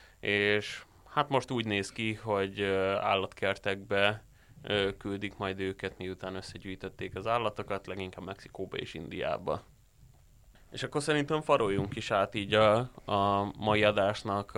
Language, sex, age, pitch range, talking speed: Hungarian, male, 20-39, 95-105 Hz, 125 wpm